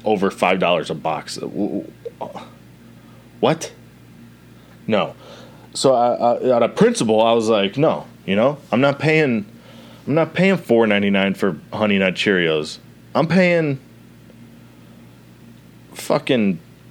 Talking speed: 115 wpm